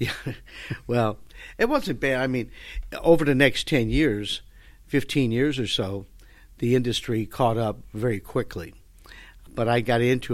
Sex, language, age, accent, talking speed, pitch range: male, English, 60-79, American, 150 wpm, 95-120 Hz